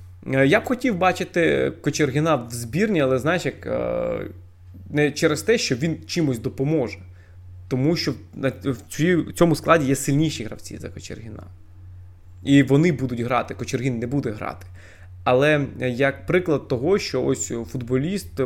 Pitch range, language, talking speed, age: 95-140 Hz, Ukrainian, 135 wpm, 20-39